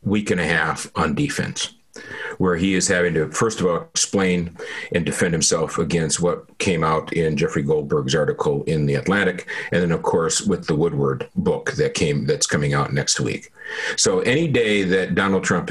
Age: 50-69